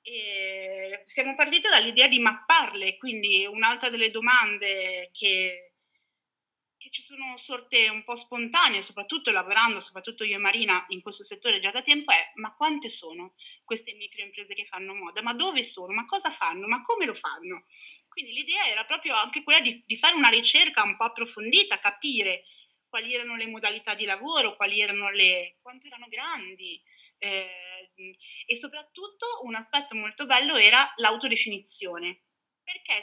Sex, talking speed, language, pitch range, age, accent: female, 160 wpm, Italian, 200-280 Hz, 30-49, native